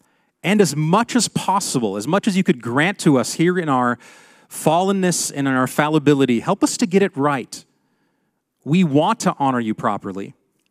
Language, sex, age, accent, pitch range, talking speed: English, male, 40-59, American, 130-165 Hz, 185 wpm